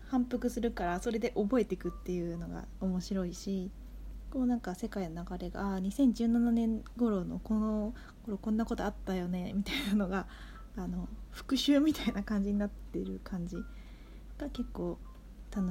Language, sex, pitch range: Japanese, female, 190-245 Hz